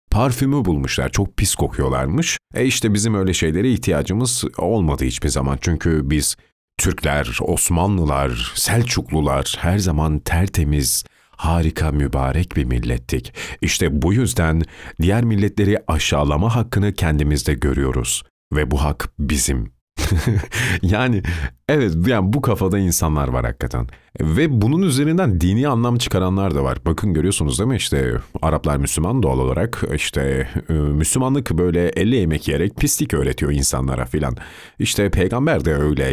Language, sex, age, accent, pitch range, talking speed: Turkish, male, 40-59, native, 70-100 Hz, 130 wpm